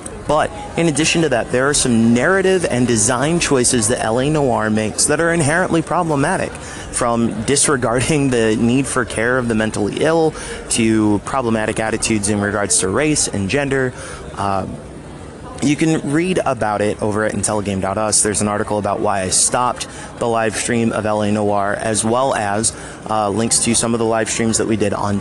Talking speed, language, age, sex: 180 wpm, English, 30-49, male